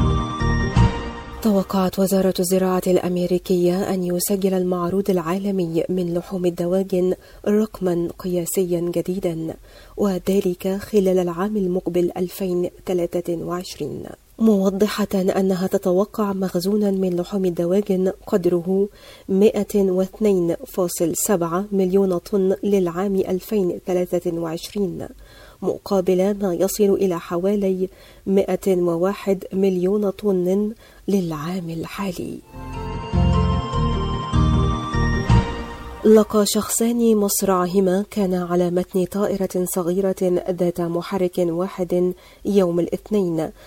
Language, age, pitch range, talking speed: Arabic, 40-59, 180-200 Hz, 75 wpm